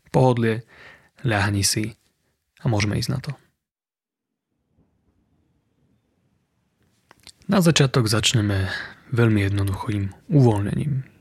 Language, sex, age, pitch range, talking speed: Slovak, male, 30-49, 105-135 Hz, 75 wpm